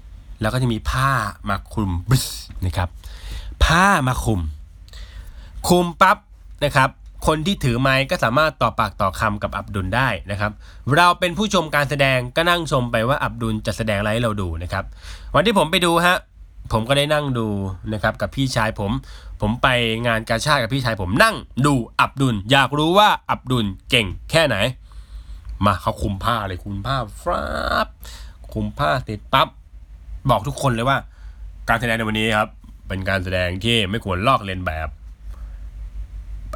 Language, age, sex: Thai, 20-39, male